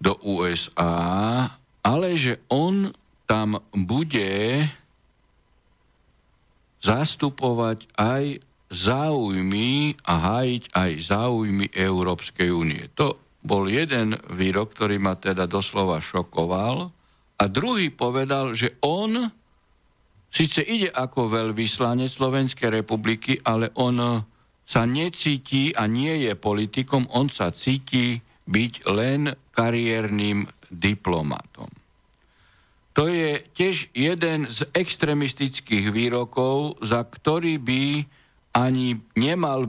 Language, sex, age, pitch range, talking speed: Slovak, male, 60-79, 100-135 Hz, 95 wpm